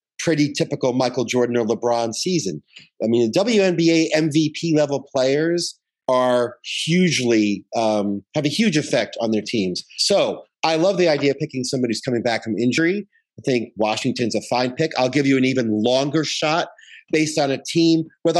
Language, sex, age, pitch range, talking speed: English, male, 40-59, 130-180 Hz, 180 wpm